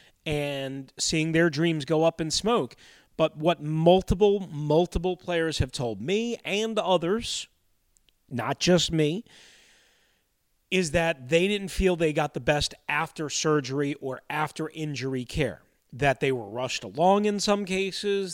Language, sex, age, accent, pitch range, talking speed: English, male, 30-49, American, 135-180 Hz, 145 wpm